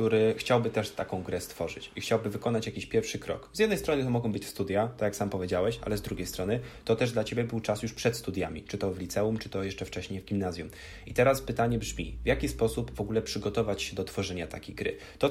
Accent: native